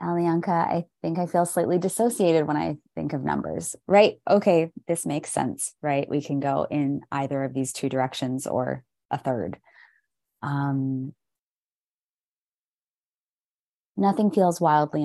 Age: 20-39